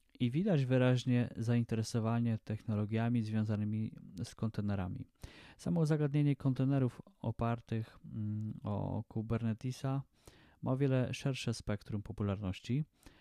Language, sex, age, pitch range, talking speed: Polish, male, 20-39, 105-130 Hz, 90 wpm